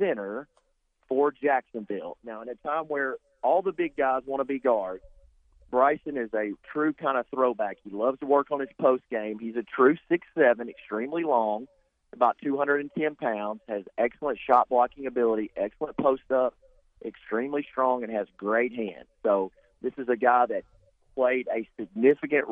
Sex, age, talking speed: male, 40-59, 170 wpm